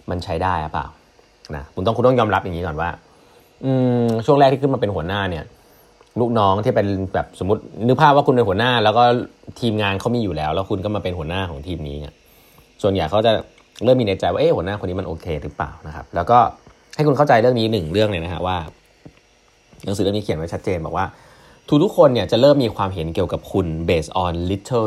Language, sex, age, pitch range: Thai, male, 20-39, 85-120 Hz